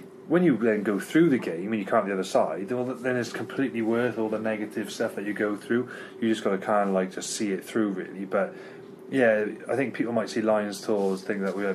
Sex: male